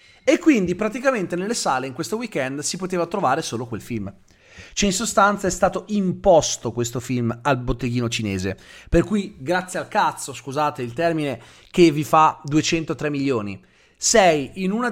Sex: male